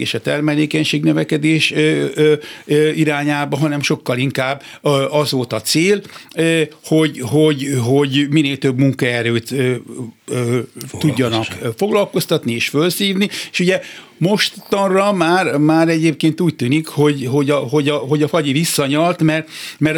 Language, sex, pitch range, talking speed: Hungarian, male, 135-165 Hz, 125 wpm